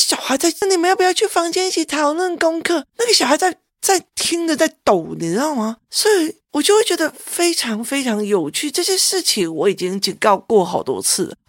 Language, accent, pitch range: Chinese, native, 205-335 Hz